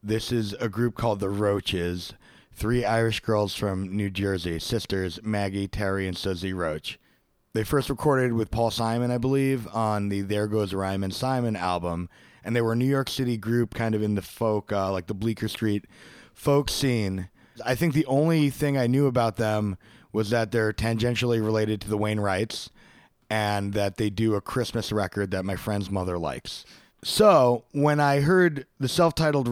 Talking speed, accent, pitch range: 185 wpm, American, 105-125 Hz